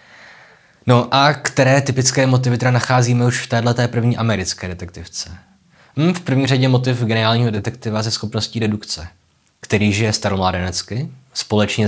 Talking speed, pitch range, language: 130 wpm, 95-110 Hz, Czech